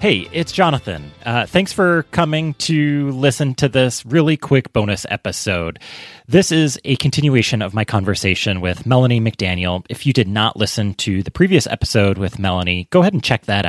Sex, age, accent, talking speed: male, 30-49, American, 180 wpm